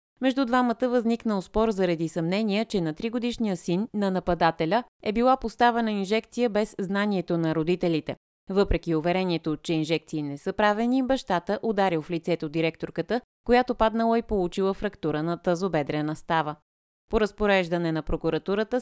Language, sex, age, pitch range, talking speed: Bulgarian, female, 30-49, 165-220 Hz, 140 wpm